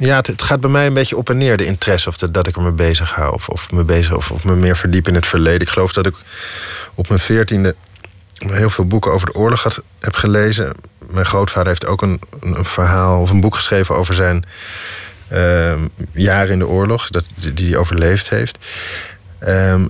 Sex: male